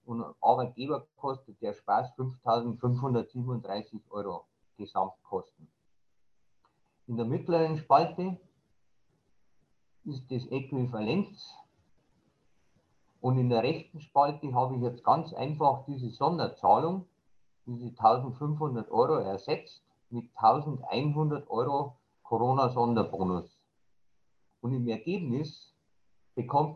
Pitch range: 115-155 Hz